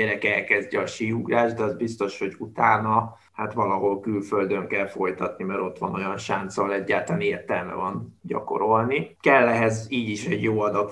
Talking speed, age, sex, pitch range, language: 170 wpm, 20-39, male, 100-115 Hz, Hungarian